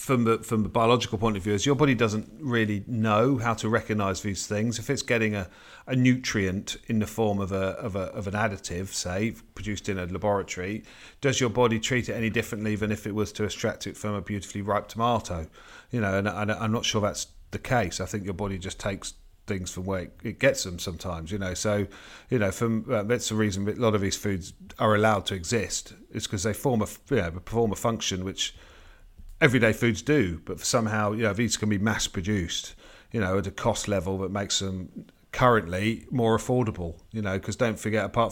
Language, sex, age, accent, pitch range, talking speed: English, male, 40-59, British, 95-115 Hz, 225 wpm